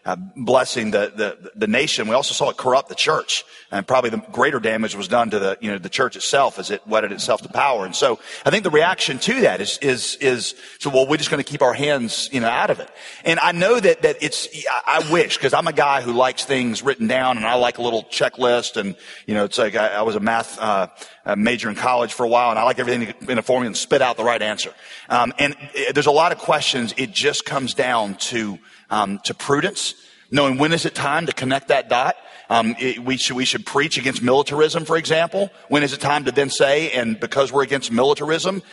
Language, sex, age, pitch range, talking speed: English, male, 40-59, 125-160 Hz, 245 wpm